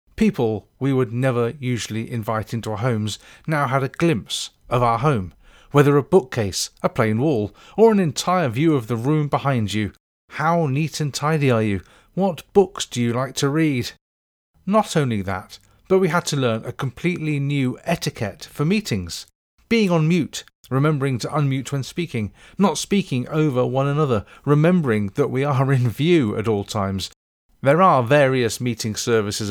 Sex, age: male, 40-59